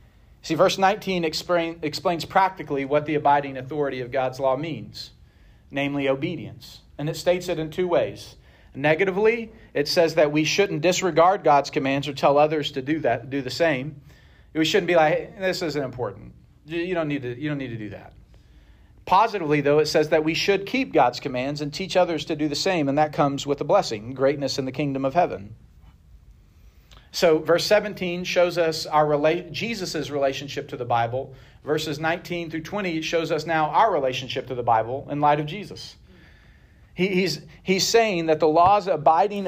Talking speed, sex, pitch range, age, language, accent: 175 wpm, male, 140-175 Hz, 40-59, English, American